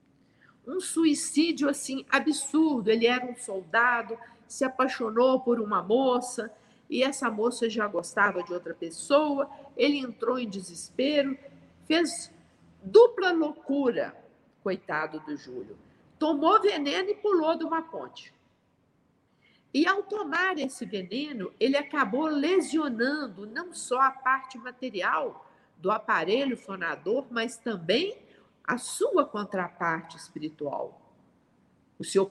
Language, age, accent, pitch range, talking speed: Portuguese, 50-69, Brazilian, 225-315 Hz, 115 wpm